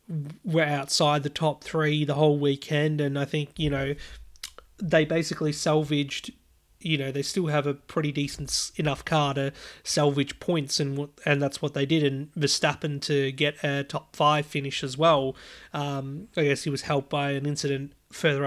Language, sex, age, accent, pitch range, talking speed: English, male, 30-49, Australian, 140-160 Hz, 180 wpm